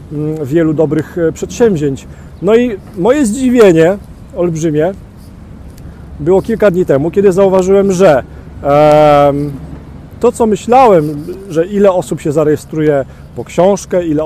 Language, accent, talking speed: Polish, native, 110 wpm